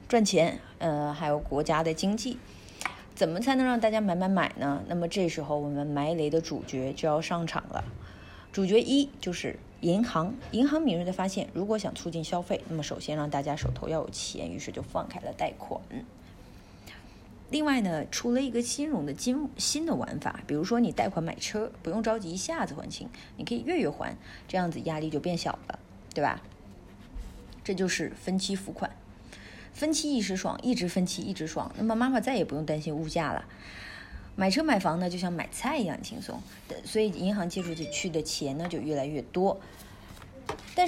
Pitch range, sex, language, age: 160-230 Hz, female, Chinese, 20-39